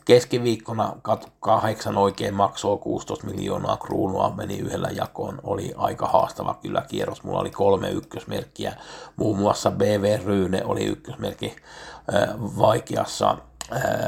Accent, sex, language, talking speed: native, male, Finnish, 110 wpm